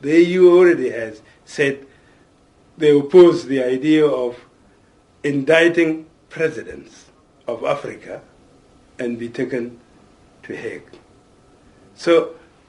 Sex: male